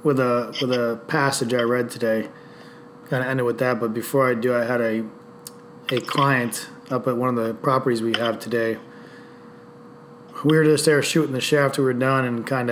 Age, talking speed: 20-39, 205 wpm